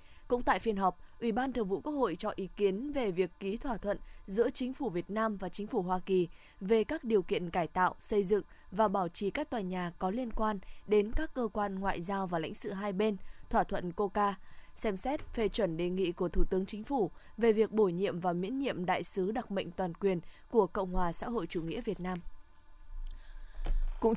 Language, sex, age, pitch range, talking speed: Vietnamese, female, 20-39, 185-230 Hz, 230 wpm